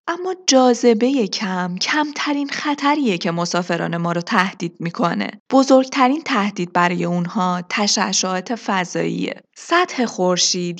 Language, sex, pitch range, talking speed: Persian, female, 180-255 Hz, 105 wpm